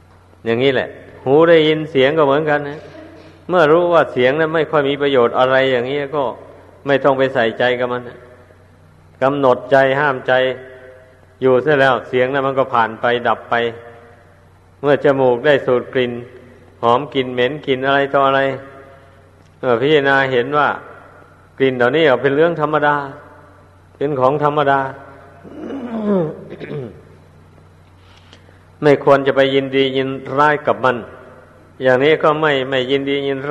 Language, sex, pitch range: Thai, male, 115-140 Hz